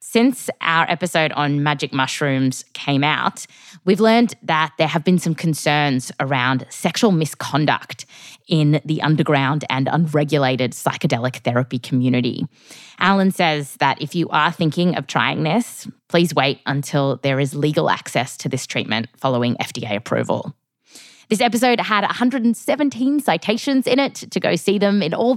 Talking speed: 150 wpm